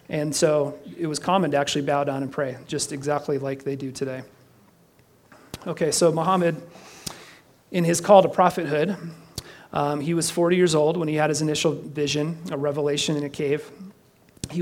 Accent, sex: American, male